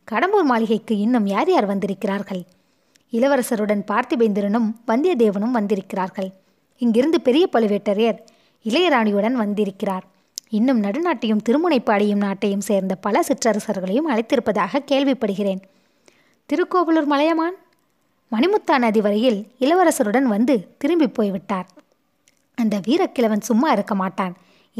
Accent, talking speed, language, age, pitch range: native, 90 wpm, Tamil, 20-39, 205-270 Hz